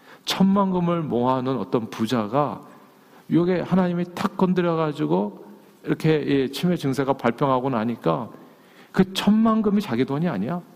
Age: 40-59